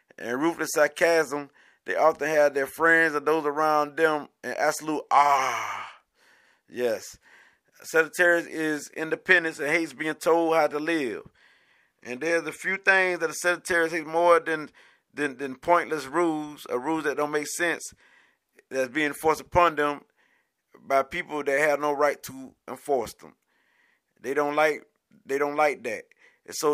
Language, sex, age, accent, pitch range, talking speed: English, male, 30-49, American, 145-160 Hz, 155 wpm